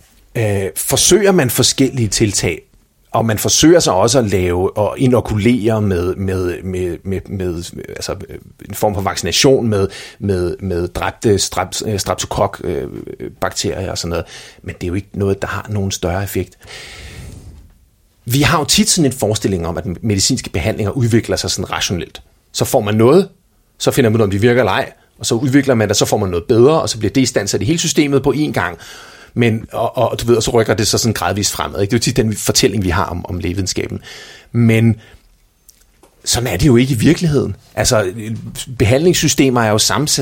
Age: 30-49